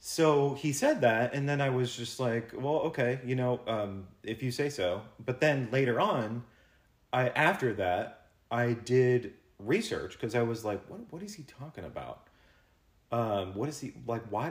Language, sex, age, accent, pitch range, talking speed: English, male, 30-49, American, 90-120 Hz, 185 wpm